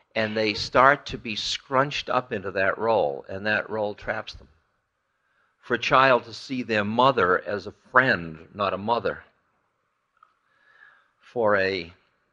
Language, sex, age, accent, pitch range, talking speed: English, male, 50-69, American, 95-125 Hz, 145 wpm